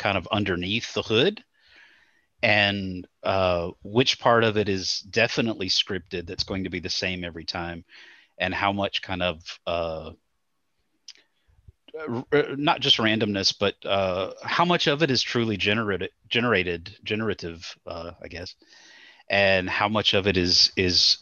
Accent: American